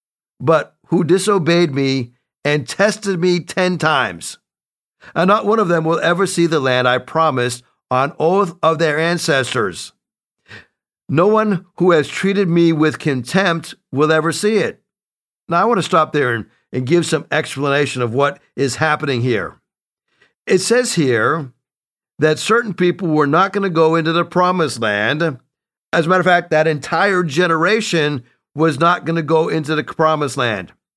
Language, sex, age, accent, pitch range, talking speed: English, male, 50-69, American, 155-190 Hz, 165 wpm